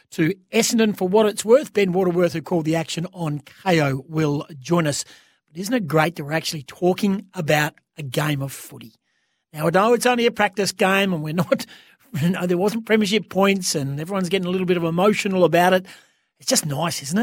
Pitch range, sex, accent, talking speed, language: 155-200 Hz, male, Australian, 215 wpm, English